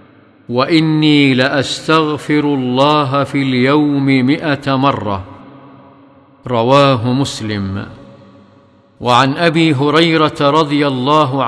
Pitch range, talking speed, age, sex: 130-150 Hz, 75 wpm, 50-69, male